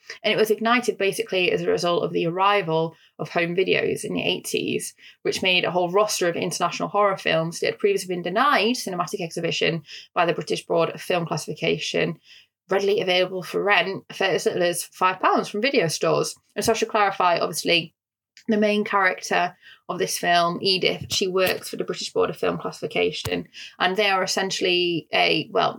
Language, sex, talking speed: English, female, 185 wpm